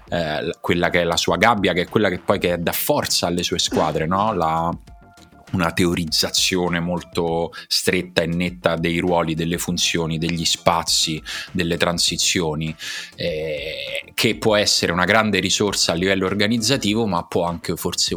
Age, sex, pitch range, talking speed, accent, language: 30-49, male, 85-95 Hz, 160 wpm, native, Italian